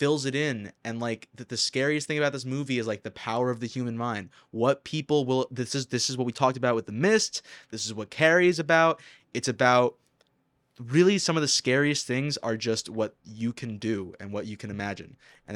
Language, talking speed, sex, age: English, 230 wpm, male, 20-39